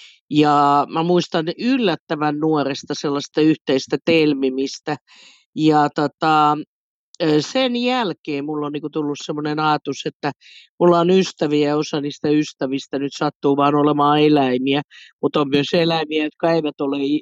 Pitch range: 140-160 Hz